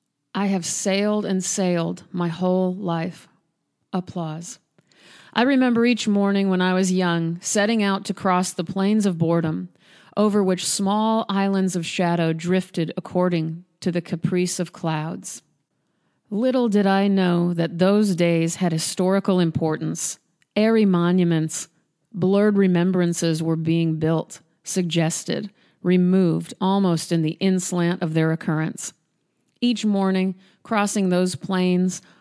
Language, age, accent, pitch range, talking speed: English, 40-59, American, 170-195 Hz, 130 wpm